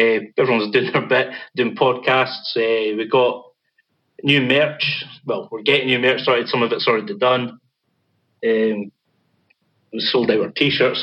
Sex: male